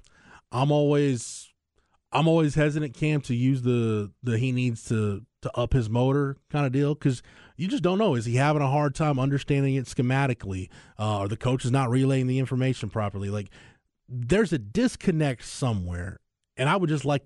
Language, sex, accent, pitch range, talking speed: English, male, American, 110-140 Hz, 170 wpm